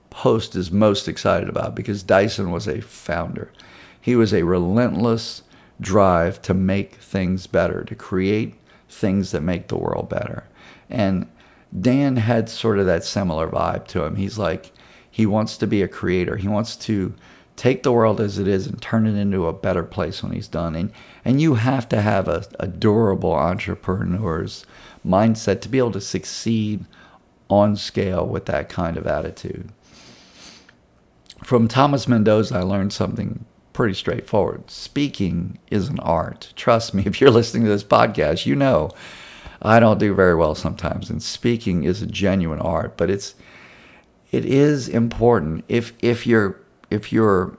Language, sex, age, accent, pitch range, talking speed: English, male, 50-69, American, 95-115 Hz, 165 wpm